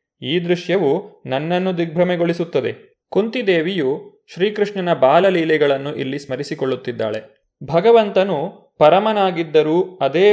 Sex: male